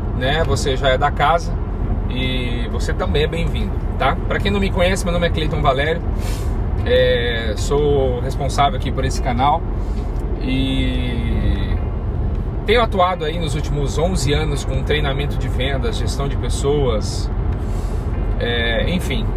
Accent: Brazilian